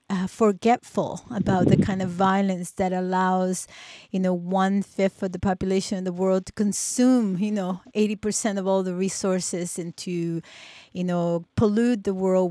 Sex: female